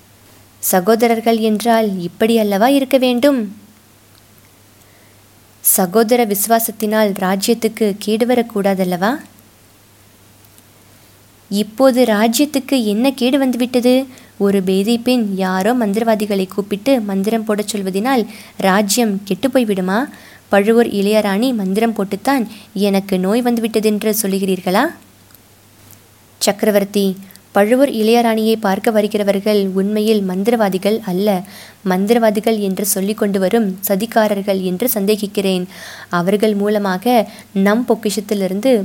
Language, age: Tamil, 20-39